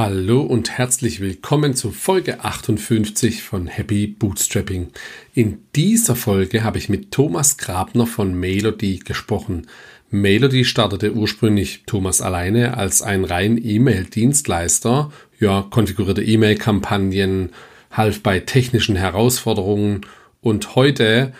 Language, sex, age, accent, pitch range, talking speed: German, male, 40-59, German, 100-120 Hz, 110 wpm